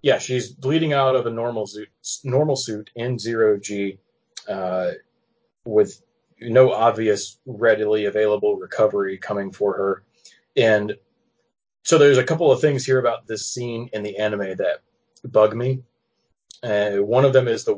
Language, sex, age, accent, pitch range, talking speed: English, male, 30-49, American, 110-150 Hz, 150 wpm